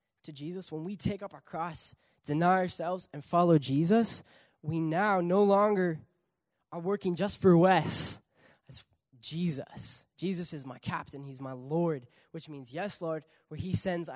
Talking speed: 160 wpm